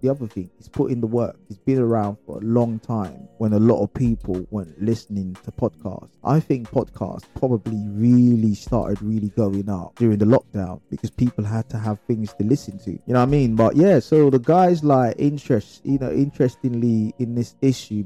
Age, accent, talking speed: 20-39, British, 210 wpm